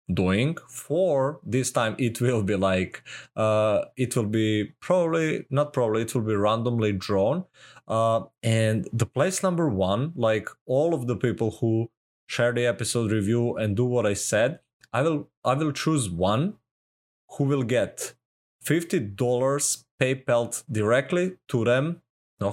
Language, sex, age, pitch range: English, male, 20-39, 110-135 Hz